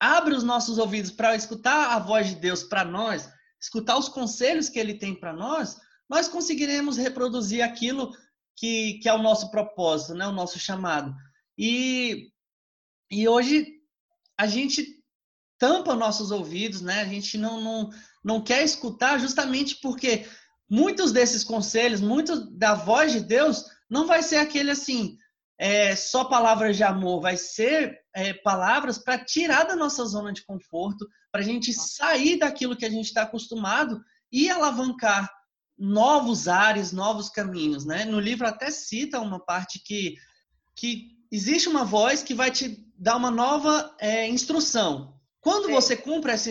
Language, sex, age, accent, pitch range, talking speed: Portuguese, male, 20-39, Brazilian, 210-280 Hz, 155 wpm